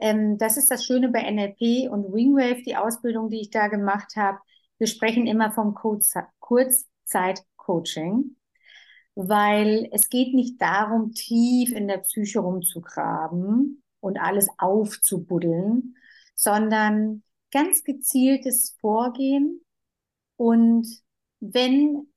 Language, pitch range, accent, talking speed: German, 200-245 Hz, German, 105 wpm